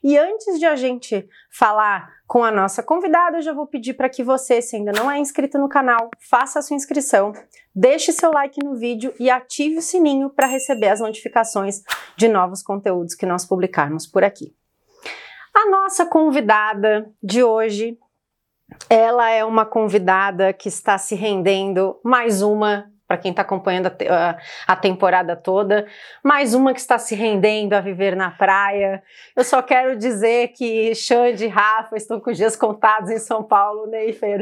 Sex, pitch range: female, 200-285 Hz